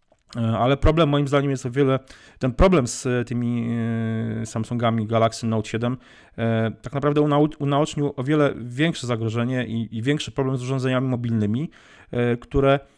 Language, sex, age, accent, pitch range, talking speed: Polish, male, 40-59, native, 110-130 Hz, 135 wpm